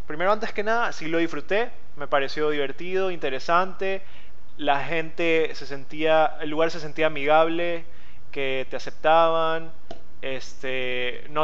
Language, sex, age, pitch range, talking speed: English, male, 20-39, 140-170 Hz, 130 wpm